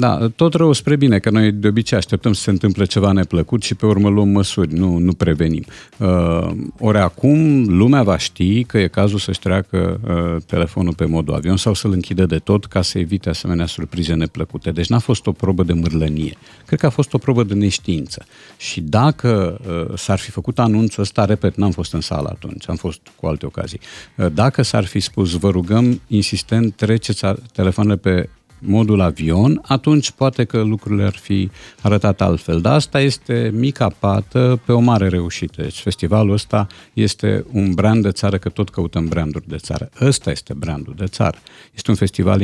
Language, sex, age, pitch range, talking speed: Romanian, male, 50-69, 85-110 Hz, 190 wpm